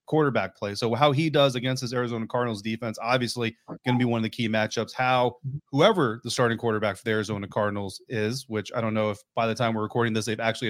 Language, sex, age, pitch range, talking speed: English, male, 30-49, 115-140 Hz, 240 wpm